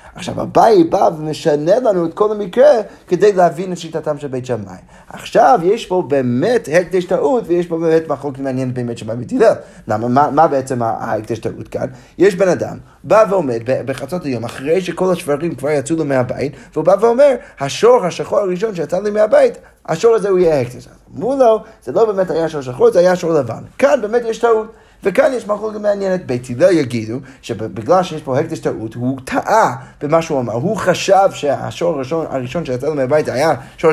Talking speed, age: 195 wpm, 30-49